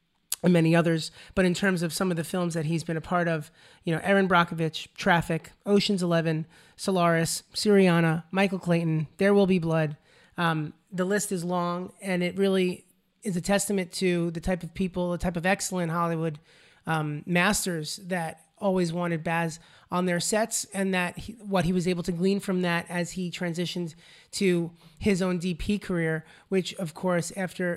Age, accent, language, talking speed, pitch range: 30-49, American, English, 185 wpm, 170-190 Hz